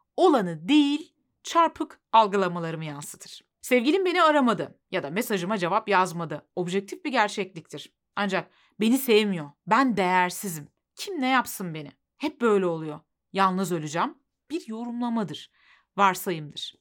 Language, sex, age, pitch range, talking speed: Turkish, female, 30-49, 175-265 Hz, 120 wpm